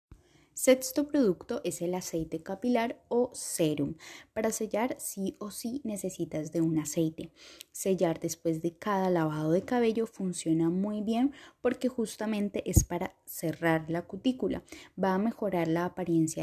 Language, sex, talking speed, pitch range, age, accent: Spanish, female, 145 wpm, 165-220 Hz, 20-39, Colombian